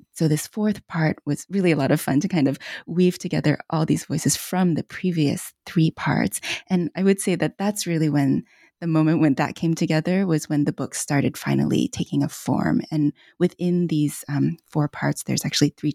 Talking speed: 205 wpm